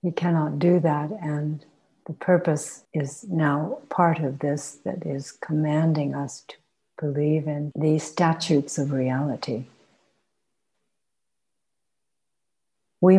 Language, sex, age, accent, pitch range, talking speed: English, female, 60-79, American, 145-170 Hz, 110 wpm